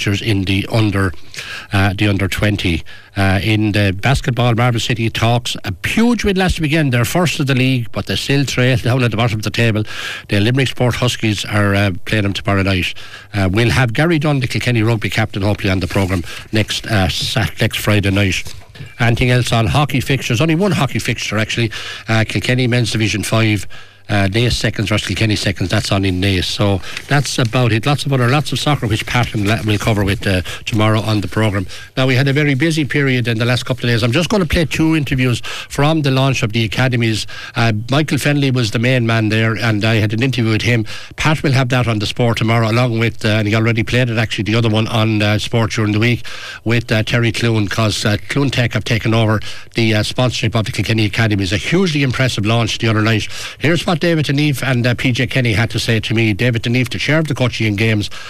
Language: English